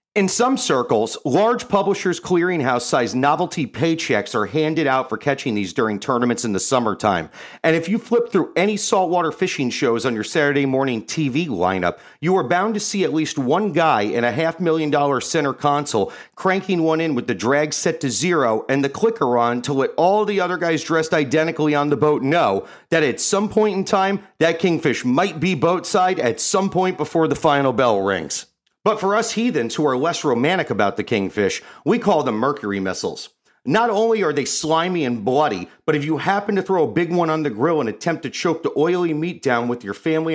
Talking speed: 205 wpm